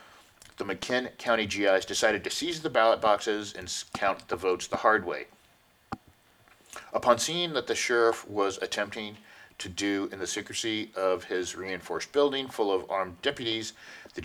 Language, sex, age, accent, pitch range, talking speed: English, male, 40-59, American, 95-120 Hz, 160 wpm